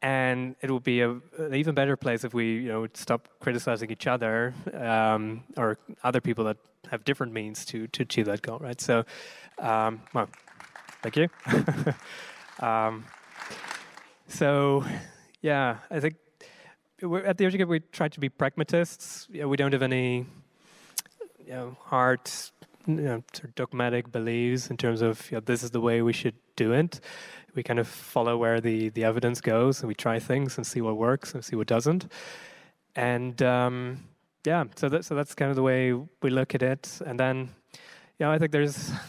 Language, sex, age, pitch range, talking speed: English, male, 20-39, 120-150 Hz, 185 wpm